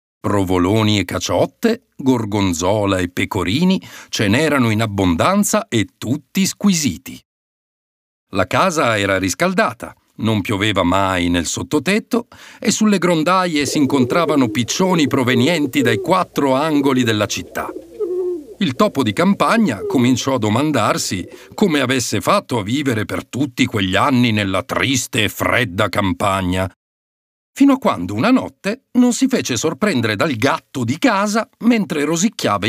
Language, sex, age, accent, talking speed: Italian, male, 50-69, native, 130 wpm